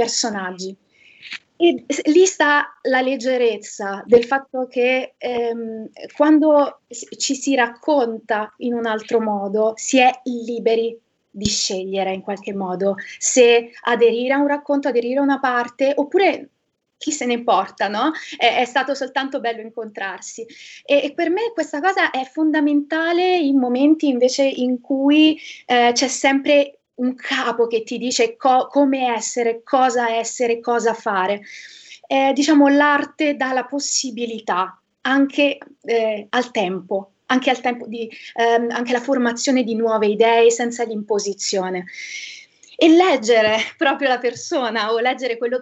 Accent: native